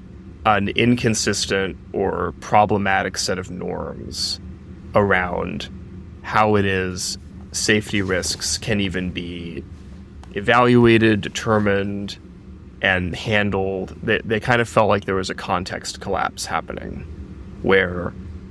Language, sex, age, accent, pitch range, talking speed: English, male, 20-39, American, 90-105 Hz, 105 wpm